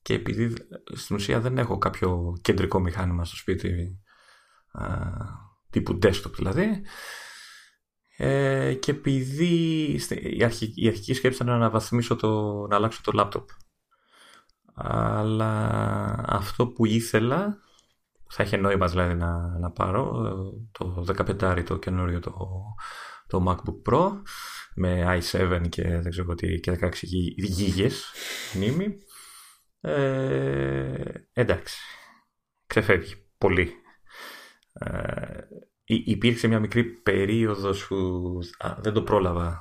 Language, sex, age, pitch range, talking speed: Greek, male, 30-49, 90-115 Hz, 100 wpm